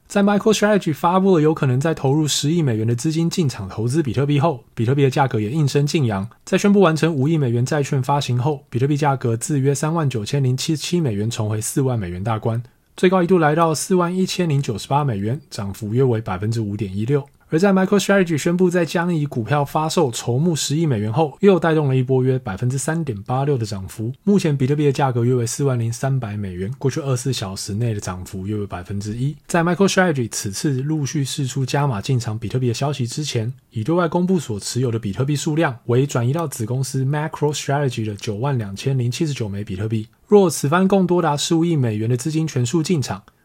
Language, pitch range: Chinese, 115-160 Hz